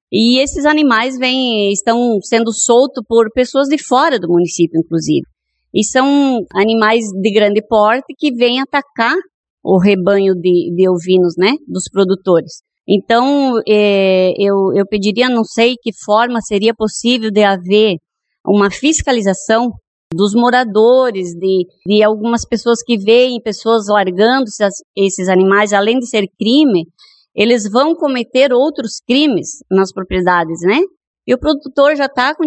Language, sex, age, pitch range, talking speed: Portuguese, female, 20-39, 200-265 Hz, 140 wpm